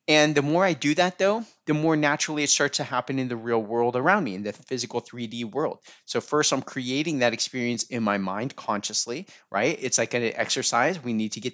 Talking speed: 230 wpm